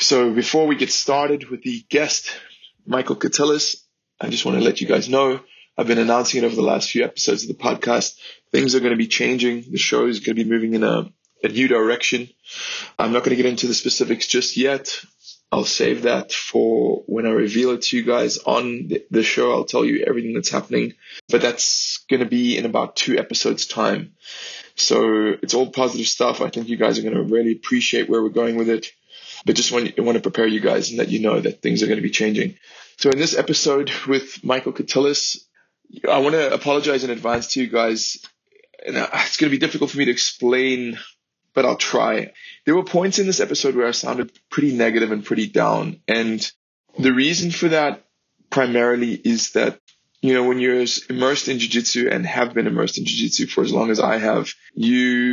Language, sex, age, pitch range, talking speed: English, male, 20-39, 115-145 Hz, 215 wpm